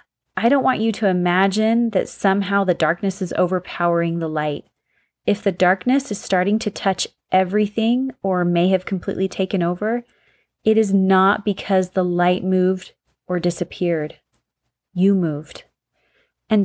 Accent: American